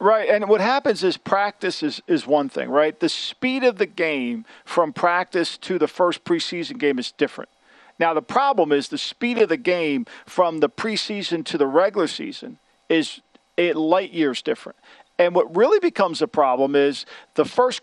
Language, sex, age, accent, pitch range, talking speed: English, male, 50-69, American, 160-220 Hz, 185 wpm